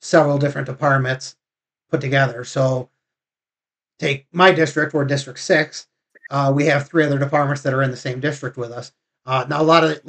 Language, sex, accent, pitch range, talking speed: English, male, American, 135-155 Hz, 190 wpm